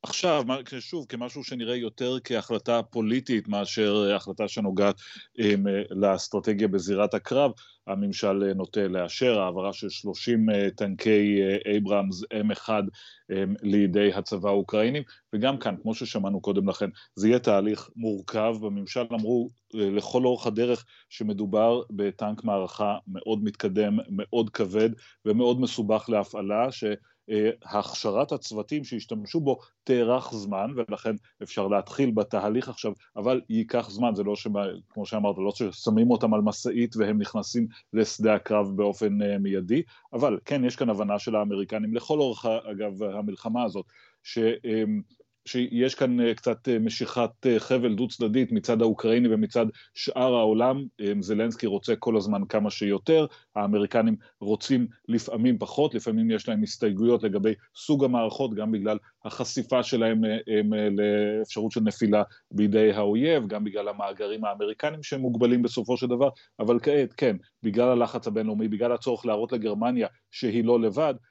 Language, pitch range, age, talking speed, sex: Hebrew, 105-120 Hz, 30-49, 135 wpm, male